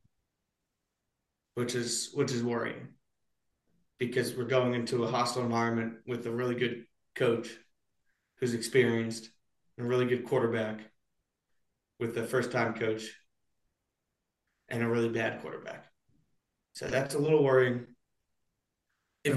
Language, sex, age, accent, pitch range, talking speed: English, male, 30-49, American, 120-145 Hz, 120 wpm